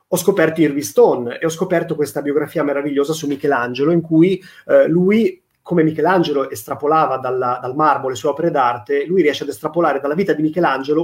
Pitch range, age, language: 135-175 Hz, 30-49, Italian